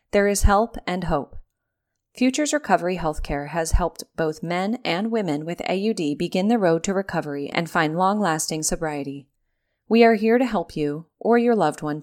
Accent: American